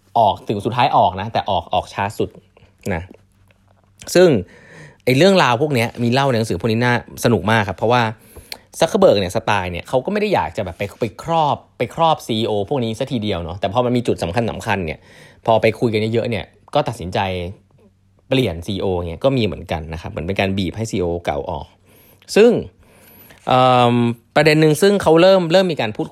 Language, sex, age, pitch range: Thai, male, 20-39, 95-130 Hz